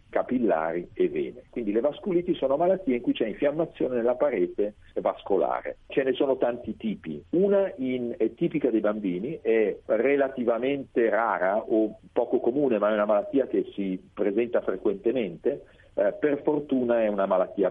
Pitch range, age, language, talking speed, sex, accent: 110-155 Hz, 50-69, Italian, 155 wpm, male, native